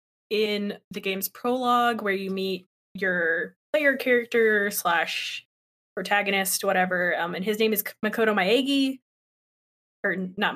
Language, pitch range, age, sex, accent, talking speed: English, 195-230 Hz, 20-39, female, American, 125 wpm